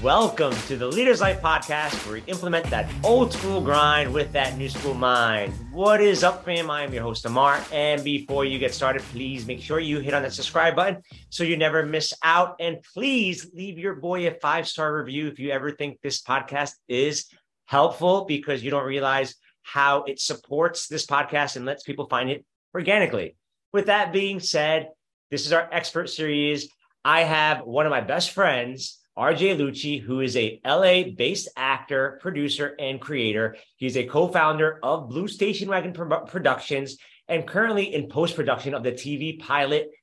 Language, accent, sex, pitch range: English, American, male, 135-170 Hz